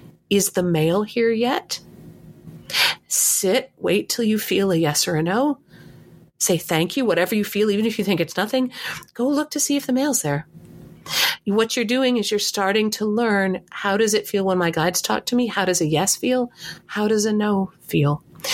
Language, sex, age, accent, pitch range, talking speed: English, female, 40-59, American, 180-225 Hz, 205 wpm